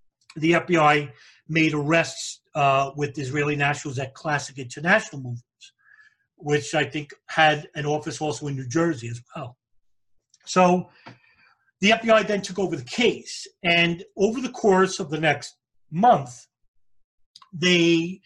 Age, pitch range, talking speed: 40-59, 135-175 Hz, 135 wpm